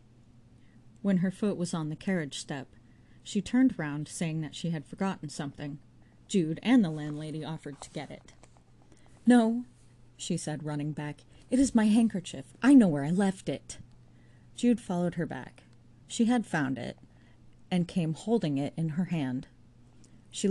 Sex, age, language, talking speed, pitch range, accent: female, 30-49, English, 165 wpm, 140-180 Hz, American